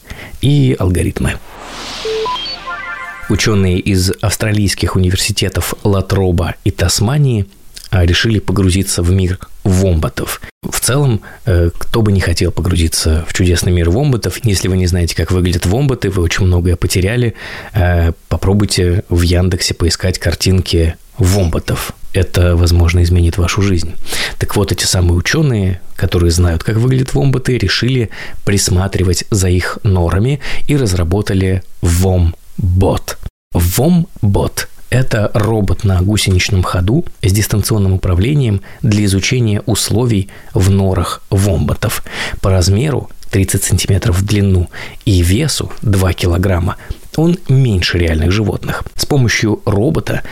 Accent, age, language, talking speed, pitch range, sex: native, 20-39, Russian, 115 wpm, 90-110 Hz, male